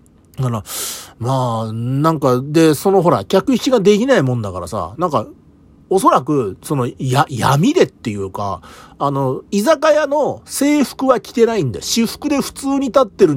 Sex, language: male, Japanese